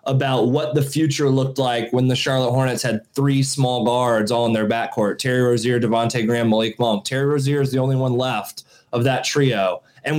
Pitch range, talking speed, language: 125-150 Hz, 200 wpm, English